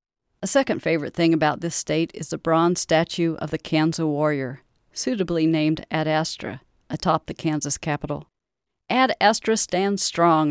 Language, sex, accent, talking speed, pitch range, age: English, female, American, 155 wpm, 160-200 Hz, 50-69